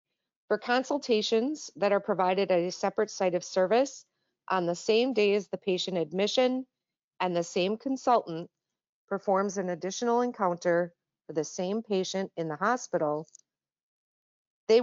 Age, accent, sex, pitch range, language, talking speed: 40-59, American, female, 175-220 Hz, English, 140 wpm